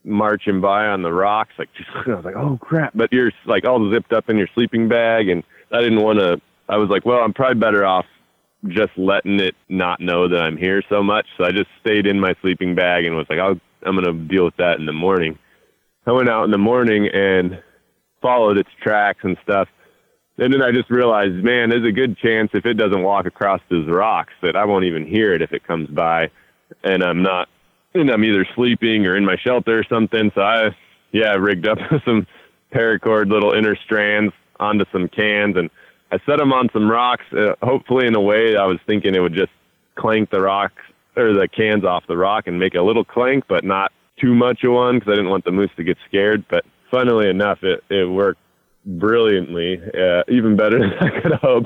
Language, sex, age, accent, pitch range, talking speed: English, male, 30-49, American, 95-115 Hz, 220 wpm